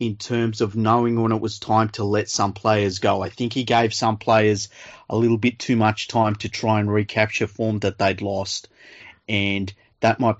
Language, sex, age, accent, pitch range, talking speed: English, male, 30-49, Australian, 100-115 Hz, 210 wpm